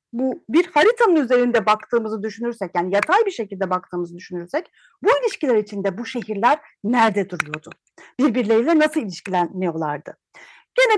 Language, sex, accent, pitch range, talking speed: Turkish, female, native, 200-315 Hz, 125 wpm